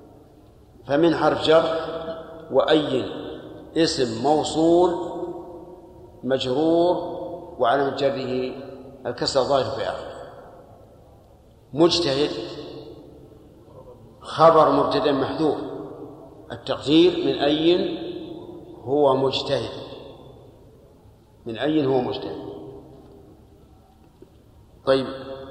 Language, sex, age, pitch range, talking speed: Arabic, male, 50-69, 130-155 Hz, 65 wpm